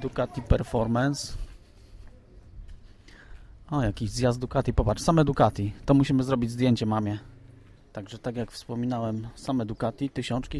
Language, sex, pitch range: English, male, 90-120 Hz